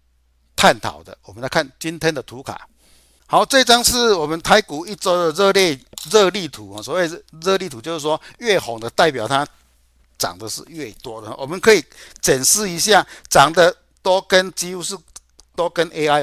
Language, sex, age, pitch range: Chinese, male, 60-79, 130-180 Hz